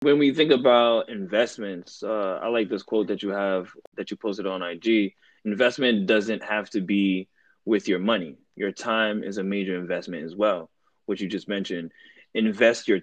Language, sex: English, male